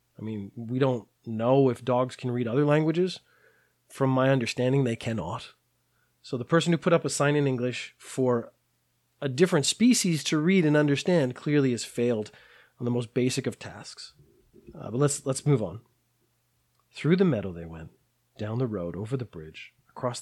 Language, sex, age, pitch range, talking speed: English, male, 30-49, 115-145 Hz, 180 wpm